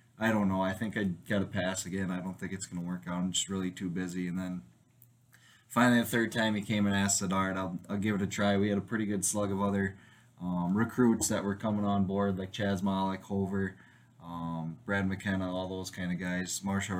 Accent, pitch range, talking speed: American, 95-110 Hz, 240 wpm